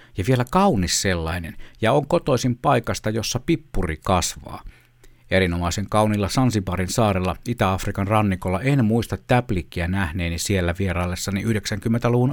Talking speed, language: 115 wpm, Finnish